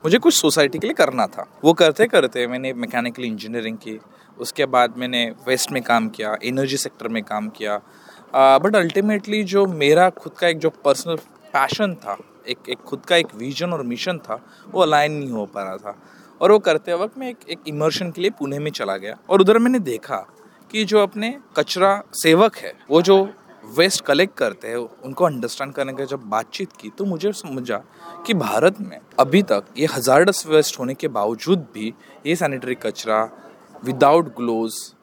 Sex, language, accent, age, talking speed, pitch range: male, Hindi, native, 20-39, 190 wpm, 130-195 Hz